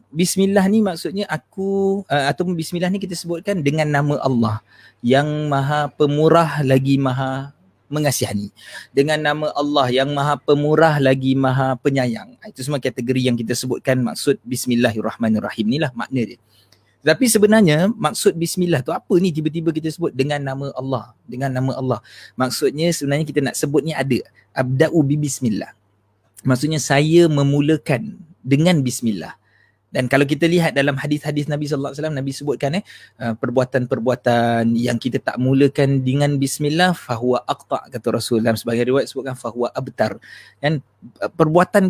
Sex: male